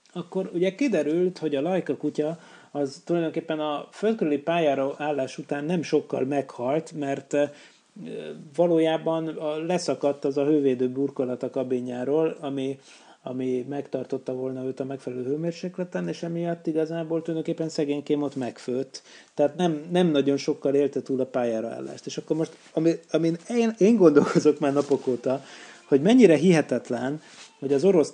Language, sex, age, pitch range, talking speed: Hungarian, male, 30-49, 135-165 Hz, 145 wpm